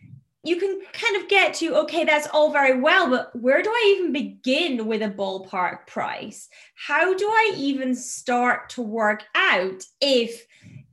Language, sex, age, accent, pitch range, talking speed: English, female, 20-39, British, 210-300 Hz, 165 wpm